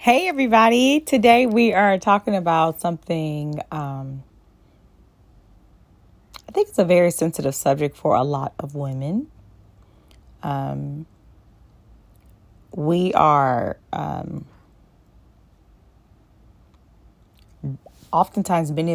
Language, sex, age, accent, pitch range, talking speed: English, female, 30-49, American, 135-160 Hz, 85 wpm